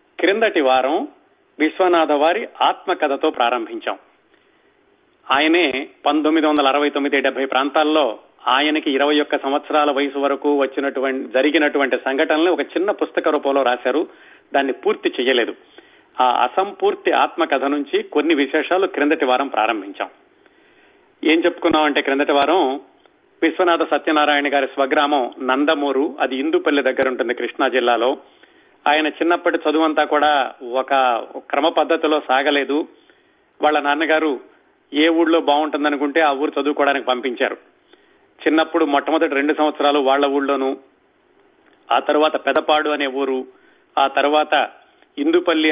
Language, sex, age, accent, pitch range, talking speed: Telugu, male, 40-59, native, 140-190 Hz, 110 wpm